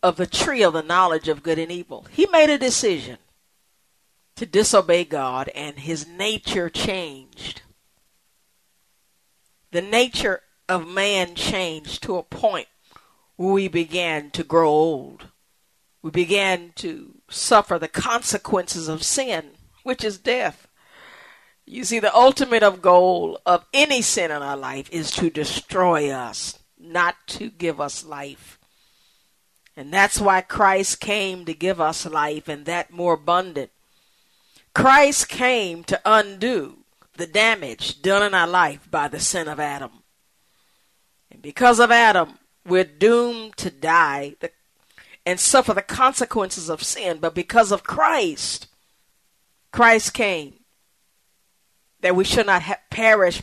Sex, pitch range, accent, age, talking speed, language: female, 165-225 Hz, American, 50-69, 135 wpm, English